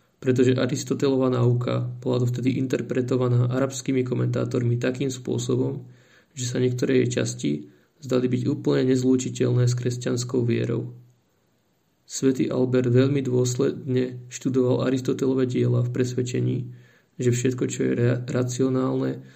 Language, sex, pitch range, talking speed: Slovak, male, 120-130 Hz, 120 wpm